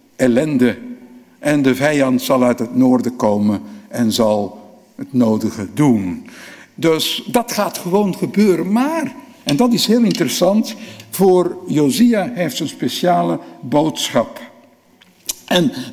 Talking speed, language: 125 wpm, Dutch